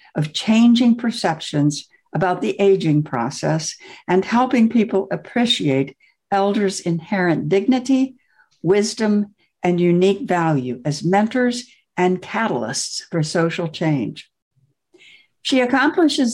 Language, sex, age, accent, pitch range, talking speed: English, female, 60-79, American, 175-235 Hz, 100 wpm